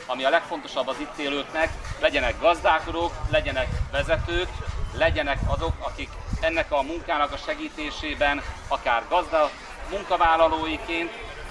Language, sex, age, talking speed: Hungarian, male, 40-59, 110 wpm